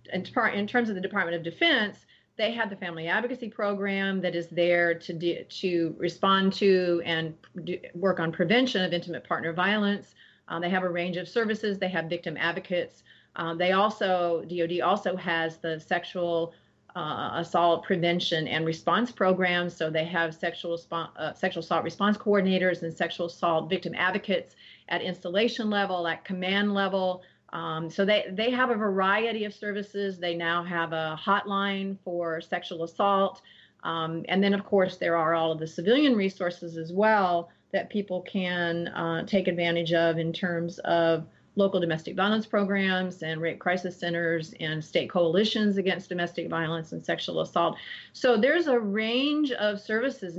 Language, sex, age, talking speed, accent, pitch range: English, female, 40-59, 170 wpm, American, 170-200 Hz